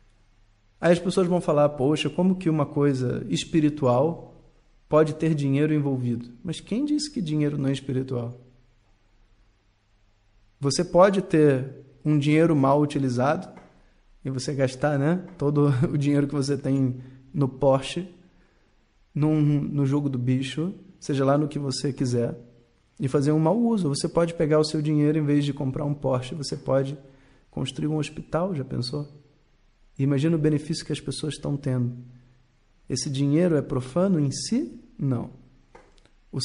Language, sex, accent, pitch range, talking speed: Portuguese, male, Brazilian, 130-160 Hz, 150 wpm